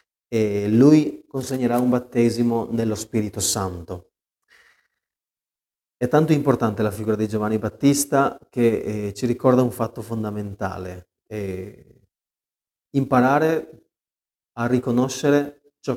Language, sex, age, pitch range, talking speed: Italian, male, 30-49, 105-125 Hz, 105 wpm